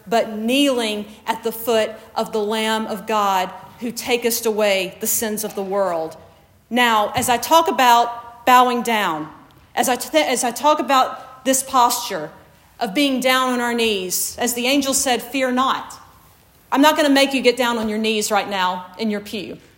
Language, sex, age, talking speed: English, female, 40-59, 180 wpm